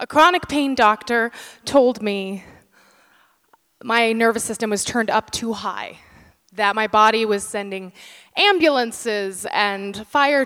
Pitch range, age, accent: 195-245 Hz, 20-39, American